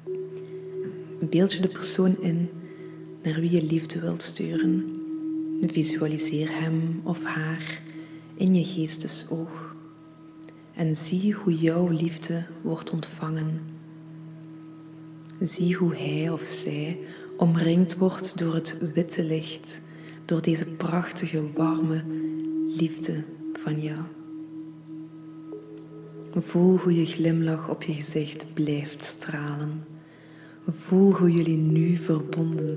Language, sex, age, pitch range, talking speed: English, female, 20-39, 160-170 Hz, 105 wpm